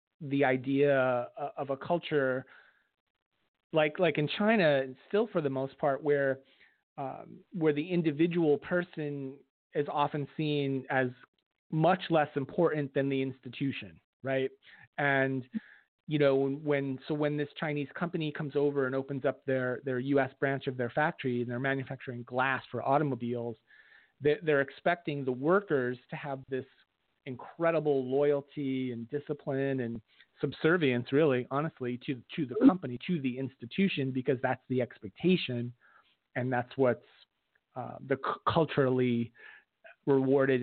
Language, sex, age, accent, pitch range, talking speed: English, male, 30-49, American, 130-150 Hz, 135 wpm